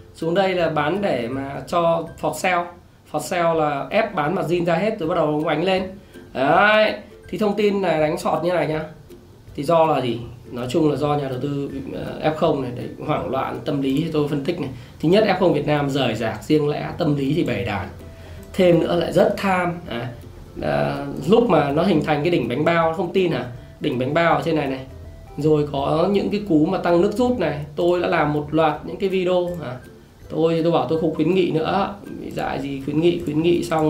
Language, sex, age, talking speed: Vietnamese, male, 20-39, 230 wpm